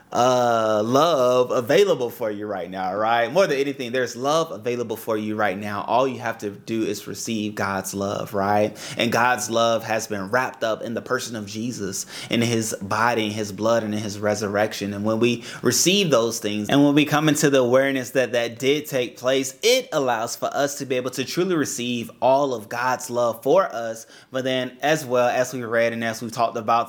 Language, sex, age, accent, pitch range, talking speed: English, male, 20-39, American, 110-135 Hz, 210 wpm